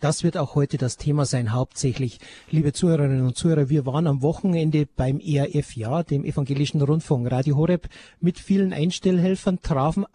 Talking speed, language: 165 wpm, German